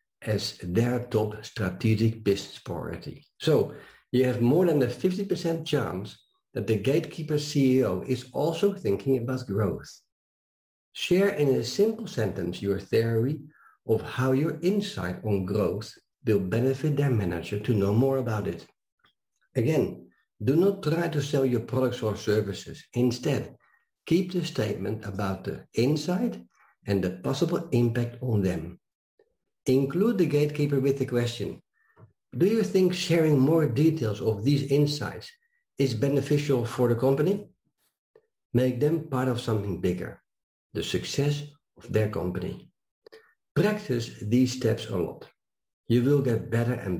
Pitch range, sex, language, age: 110-150 Hz, male, English, 60-79